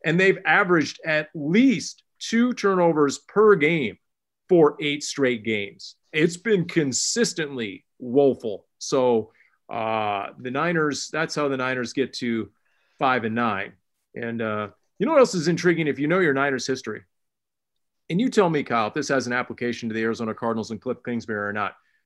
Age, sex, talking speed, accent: 40-59, male, 170 wpm, American